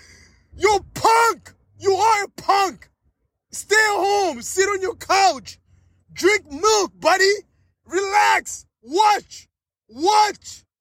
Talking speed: 105 wpm